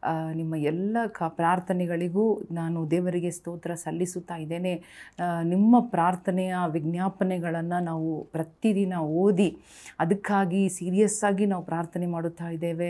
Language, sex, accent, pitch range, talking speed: Kannada, female, native, 175-200 Hz, 100 wpm